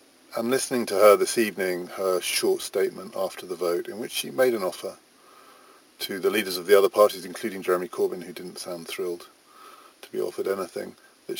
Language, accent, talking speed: English, British, 195 wpm